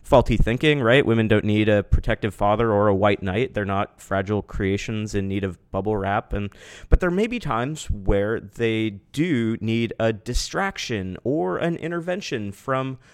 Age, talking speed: 30-49, 175 wpm